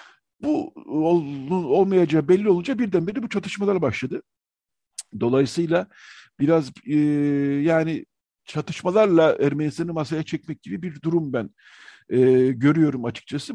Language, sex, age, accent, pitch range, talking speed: Turkish, male, 50-69, native, 135-185 Hz, 105 wpm